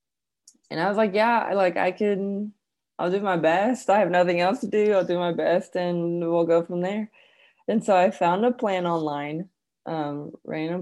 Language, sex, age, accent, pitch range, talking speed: English, female, 20-39, American, 155-190 Hz, 200 wpm